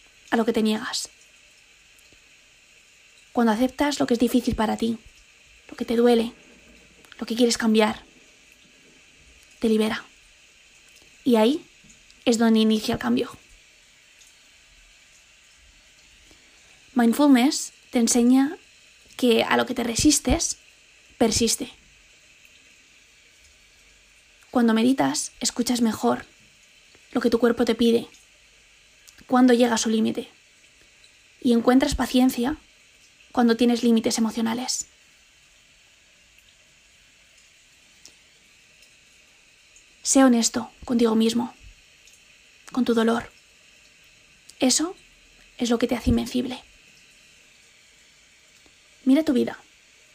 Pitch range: 230-255 Hz